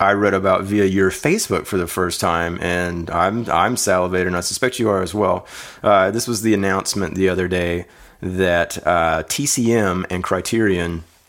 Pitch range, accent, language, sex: 90-115 Hz, American, English, male